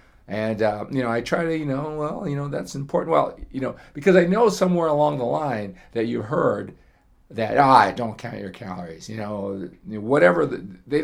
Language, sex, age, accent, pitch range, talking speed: English, male, 40-59, American, 100-140 Hz, 200 wpm